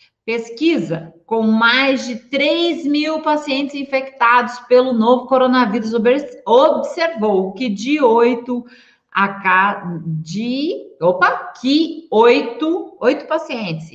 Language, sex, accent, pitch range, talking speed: Portuguese, female, Brazilian, 225-290 Hz, 100 wpm